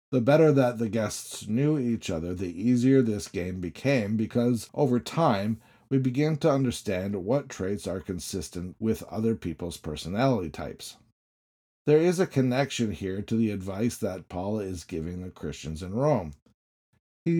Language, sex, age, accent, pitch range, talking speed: English, male, 50-69, American, 95-130 Hz, 160 wpm